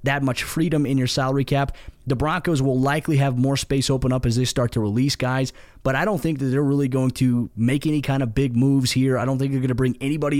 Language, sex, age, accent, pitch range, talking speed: English, male, 20-39, American, 130-150 Hz, 265 wpm